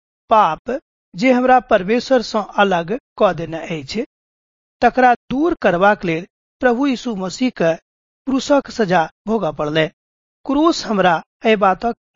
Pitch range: 170-245 Hz